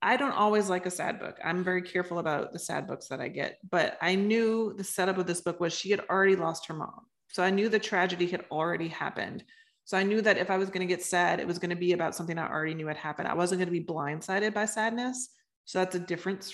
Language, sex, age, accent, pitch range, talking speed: English, female, 30-49, American, 165-195 Hz, 270 wpm